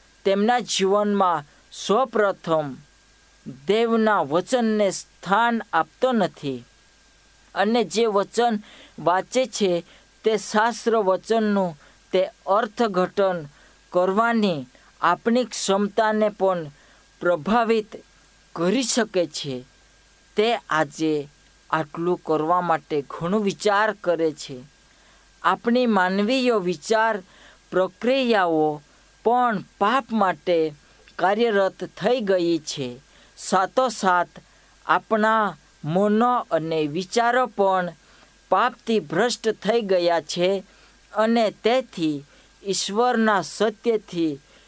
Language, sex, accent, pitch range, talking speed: Hindi, female, native, 165-220 Hz, 60 wpm